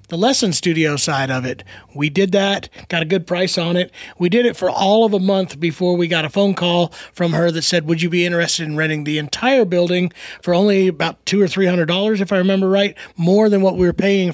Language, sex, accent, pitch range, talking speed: English, male, American, 155-195 Hz, 250 wpm